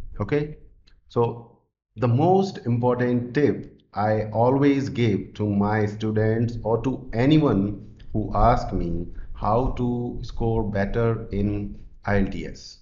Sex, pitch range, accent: male, 105-135 Hz, Indian